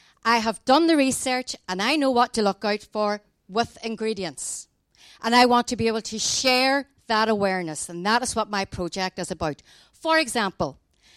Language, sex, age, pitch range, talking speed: English, female, 50-69, 190-255 Hz, 190 wpm